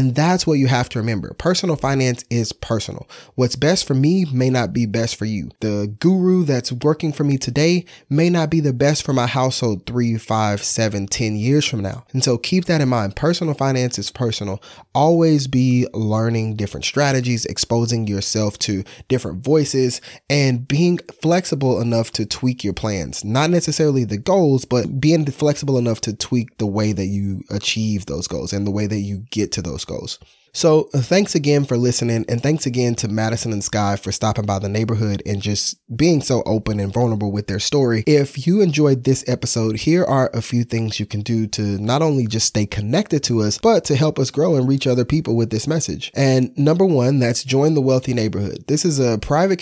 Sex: male